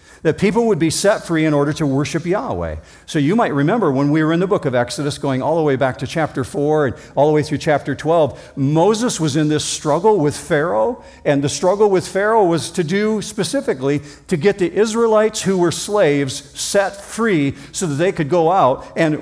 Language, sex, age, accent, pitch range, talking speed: English, male, 50-69, American, 135-175 Hz, 220 wpm